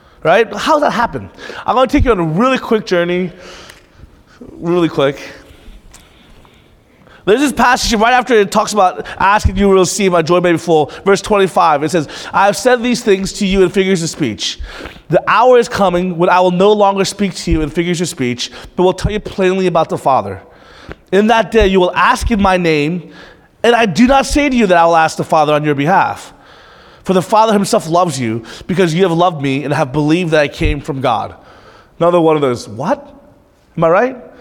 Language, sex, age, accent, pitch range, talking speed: English, male, 20-39, American, 155-220 Hz, 220 wpm